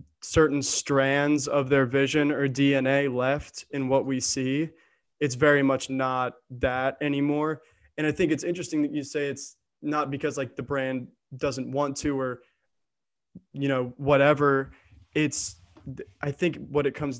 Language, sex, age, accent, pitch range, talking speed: English, male, 20-39, American, 130-145 Hz, 155 wpm